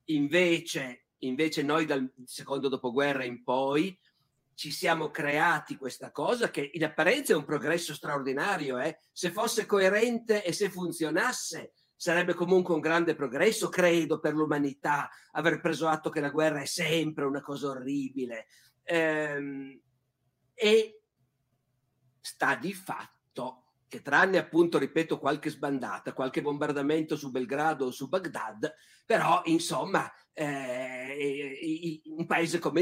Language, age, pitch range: Italian, 50-69, 140-185 Hz